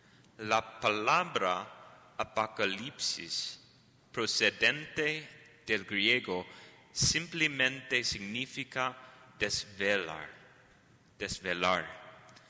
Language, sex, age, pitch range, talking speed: English, male, 30-49, 100-125 Hz, 50 wpm